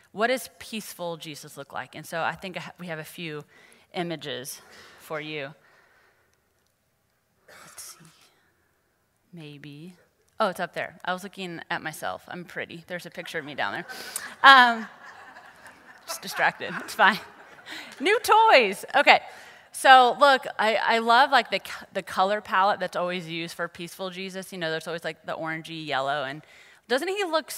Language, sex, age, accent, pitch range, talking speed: English, female, 30-49, American, 170-215 Hz, 160 wpm